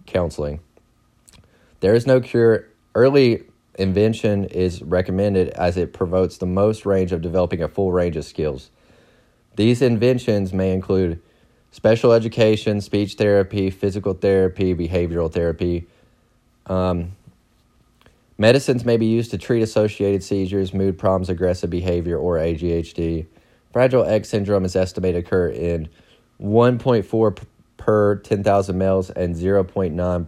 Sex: male